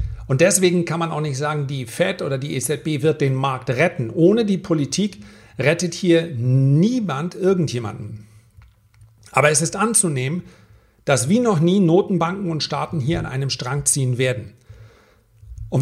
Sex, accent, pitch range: male, German, 120-175 Hz